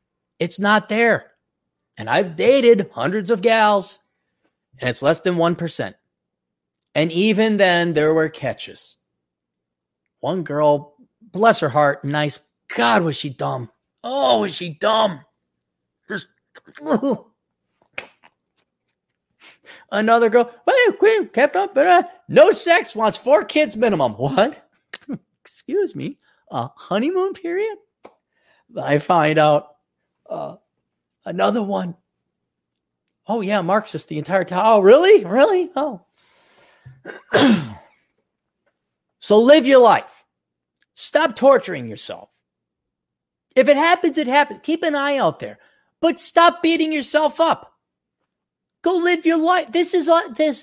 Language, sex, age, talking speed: English, male, 30-49, 115 wpm